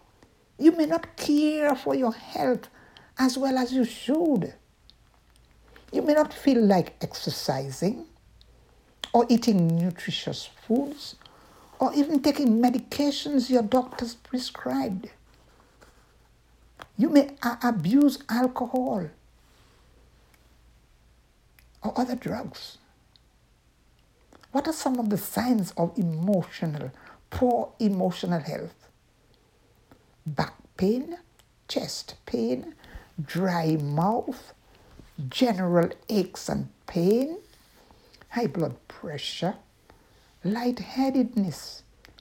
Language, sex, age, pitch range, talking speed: English, male, 60-79, 190-265 Hz, 90 wpm